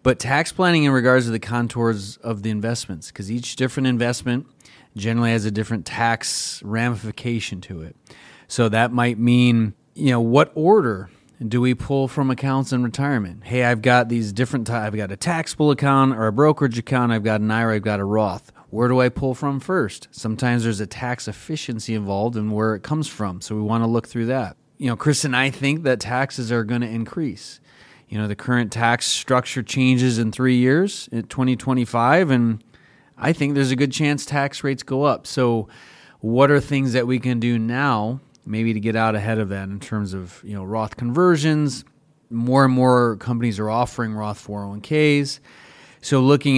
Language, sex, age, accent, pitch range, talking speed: English, male, 30-49, American, 110-135 Hz, 195 wpm